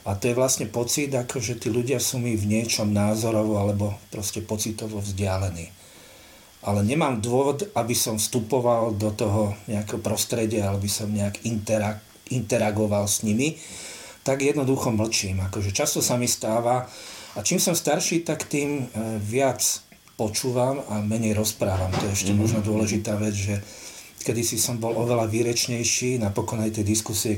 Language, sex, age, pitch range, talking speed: Slovak, male, 40-59, 105-120 Hz, 150 wpm